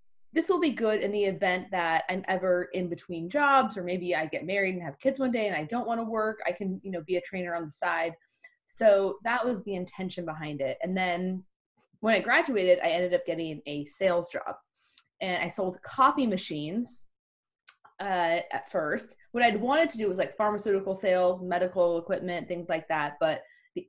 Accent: American